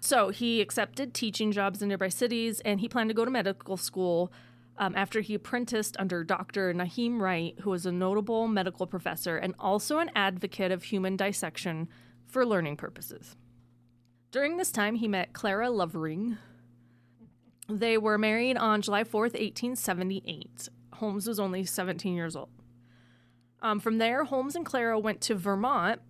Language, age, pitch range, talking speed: English, 30-49, 175-220 Hz, 160 wpm